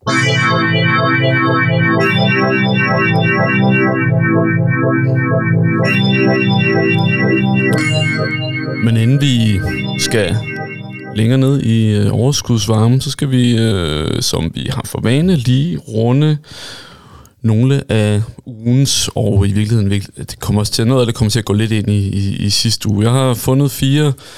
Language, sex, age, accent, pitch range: Danish, male, 20-39, native, 105-135 Hz